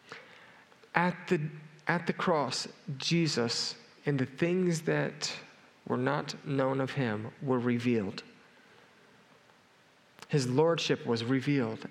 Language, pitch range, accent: English, 125-155 Hz, American